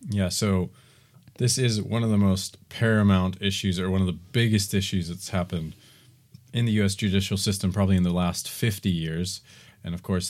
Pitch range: 90-115 Hz